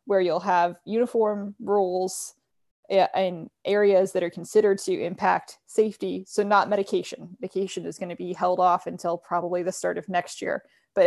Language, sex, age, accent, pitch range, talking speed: English, female, 20-39, American, 175-200 Hz, 170 wpm